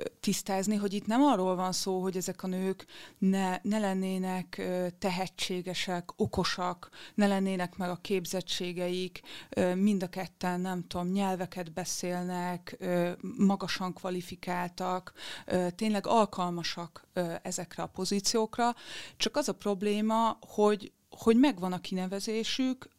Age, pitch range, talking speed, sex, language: 30-49, 180-200 Hz, 115 wpm, female, Hungarian